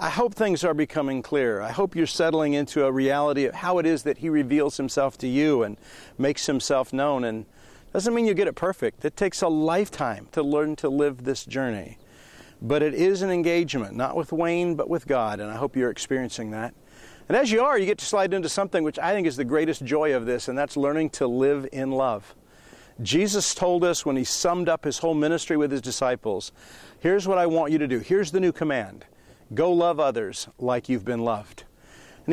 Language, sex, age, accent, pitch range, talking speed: English, male, 50-69, American, 140-185 Hz, 225 wpm